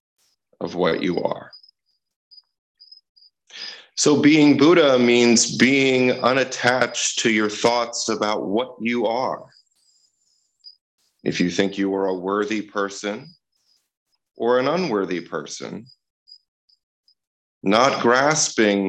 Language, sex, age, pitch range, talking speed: English, male, 30-49, 95-120 Hz, 100 wpm